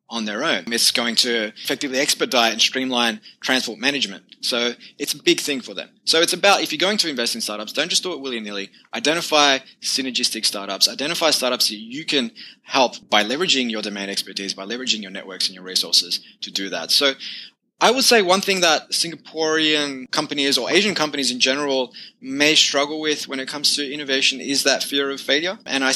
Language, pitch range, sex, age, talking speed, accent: English, 120-155 Hz, male, 20-39, 200 wpm, Australian